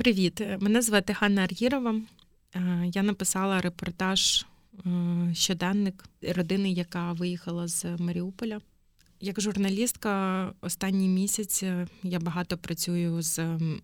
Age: 20-39